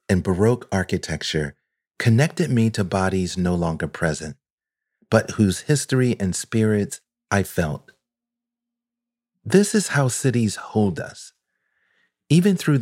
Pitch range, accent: 95-135 Hz, American